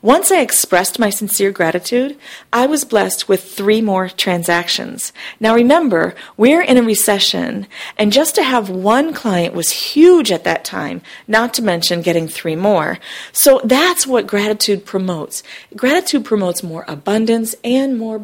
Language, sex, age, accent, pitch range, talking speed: English, female, 40-59, American, 185-245 Hz, 155 wpm